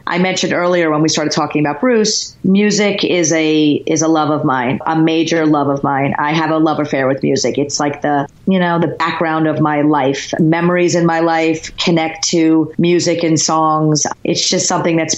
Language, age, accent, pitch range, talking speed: English, 40-59, American, 150-180 Hz, 205 wpm